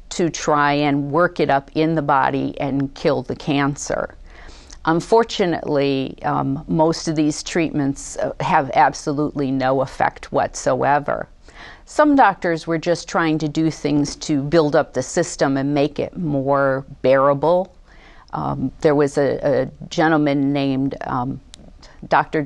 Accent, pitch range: American, 140-160 Hz